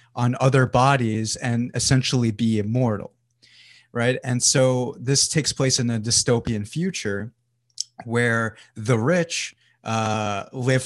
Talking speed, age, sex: 120 wpm, 30-49, male